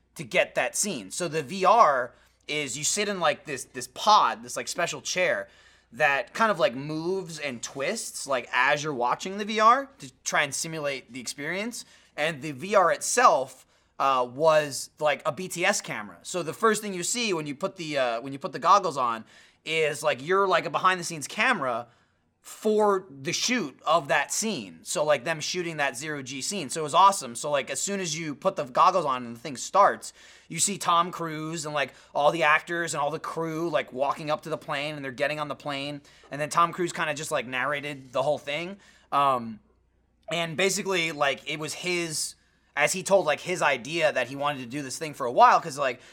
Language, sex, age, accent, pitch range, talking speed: English, male, 30-49, American, 140-180 Hz, 220 wpm